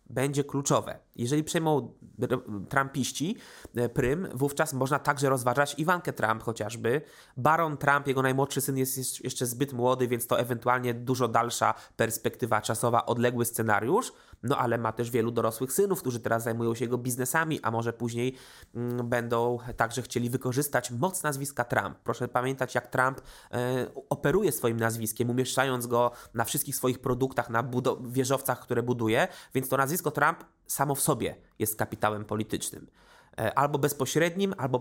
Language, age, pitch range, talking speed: Polish, 20-39, 120-145 Hz, 145 wpm